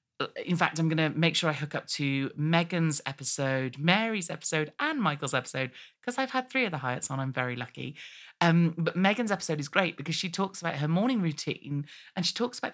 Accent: British